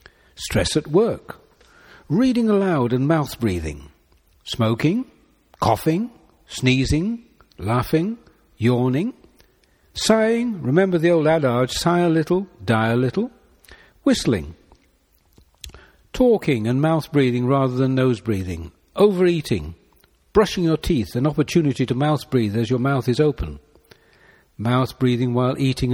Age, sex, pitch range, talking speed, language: 60-79, male, 115-170 Hz, 105 wpm, English